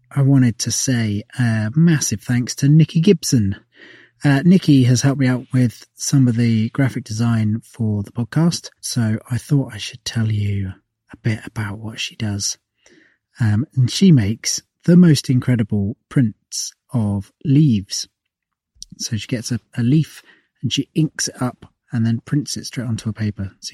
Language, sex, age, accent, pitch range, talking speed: English, male, 30-49, British, 110-145 Hz, 170 wpm